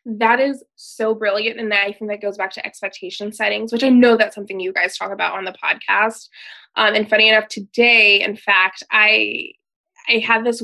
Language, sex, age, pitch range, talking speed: English, female, 20-39, 210-255 Hz, 205 wpm